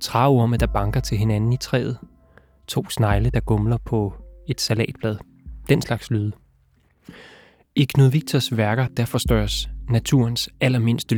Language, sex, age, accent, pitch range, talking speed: Danish, male, 20-39, native, 110-125 Hz, 135 wpm